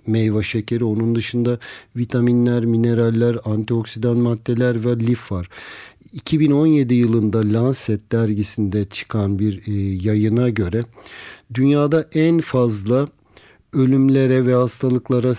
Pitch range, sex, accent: 115-130 Hz, male, native